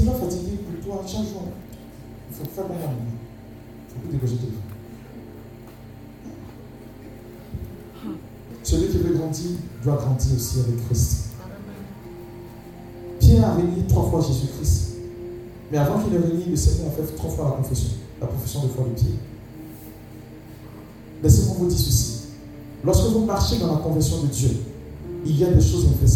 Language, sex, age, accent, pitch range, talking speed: French, male, 50-69, French, 110-145 Hz, 165 wpm